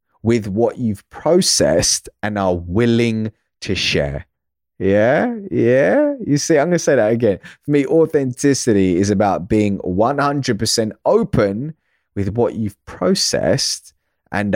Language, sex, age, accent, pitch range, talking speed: English, male, 30-49, British, 100-155 Hz, 130 wpm